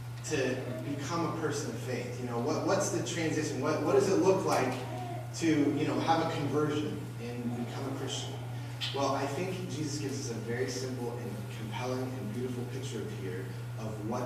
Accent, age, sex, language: American, 30-49, male, English